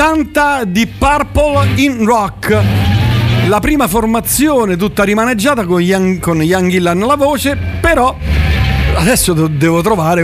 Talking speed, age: 115 wpm, 50-69